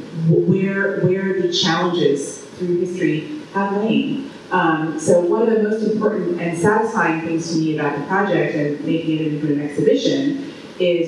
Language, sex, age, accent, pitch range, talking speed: English, female, 30-49, American, 155-195 Hz, 150 wpm